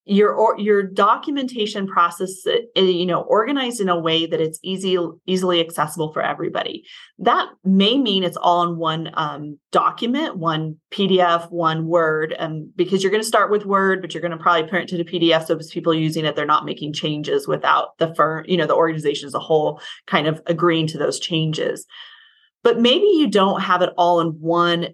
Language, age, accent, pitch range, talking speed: English, 30-49, American, 160-190 Hz, 195 wpm